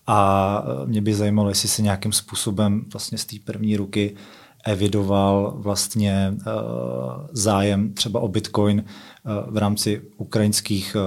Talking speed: 120 wpm